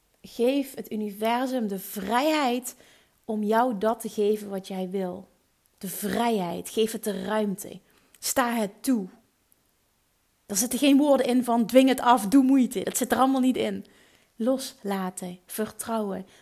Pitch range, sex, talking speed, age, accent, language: 205-260 Hz, female, 150 wpm, 30-49, Dutch, Dutch